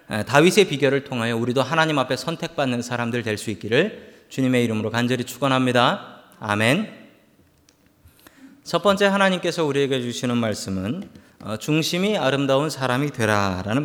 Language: Korean